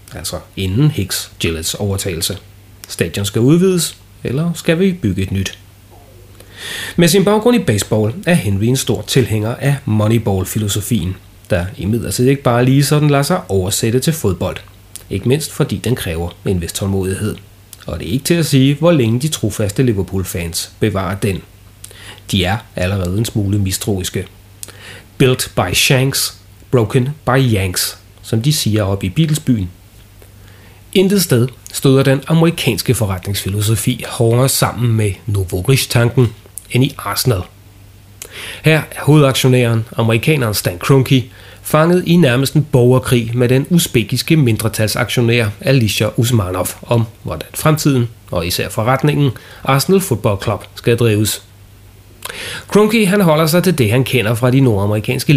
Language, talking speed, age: Danish, 140 wpm, 30-49